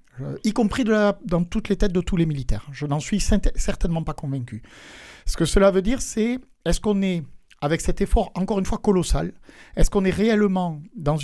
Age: 50-69